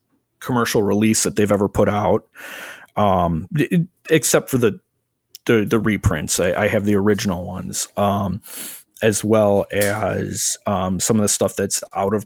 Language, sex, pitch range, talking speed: English, male, 100-115 Hz, 155 wpm